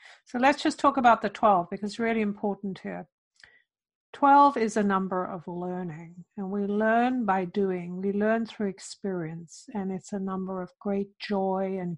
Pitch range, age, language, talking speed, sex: 190-225 Hz, 60-79, English, 175 wpm, female